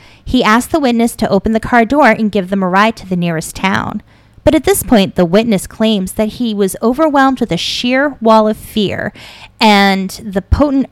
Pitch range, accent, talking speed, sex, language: 185-240 Hz, American, 210 wpm, female, English